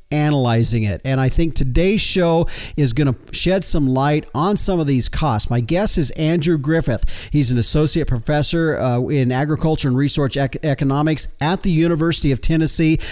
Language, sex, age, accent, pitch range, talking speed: English, male, 40-59, American, 135-165 Hz, 180 wpm